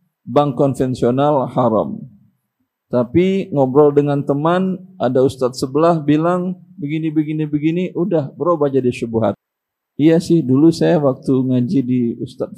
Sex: male